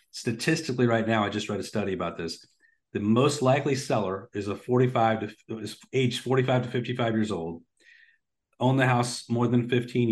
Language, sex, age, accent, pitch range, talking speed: English, male, 40-59, American, 105-125 Hz, 185 wpm